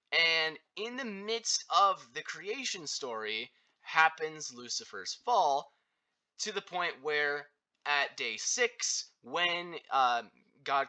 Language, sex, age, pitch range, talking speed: English, male, 20-39, 155-250 Hz, 115 wpm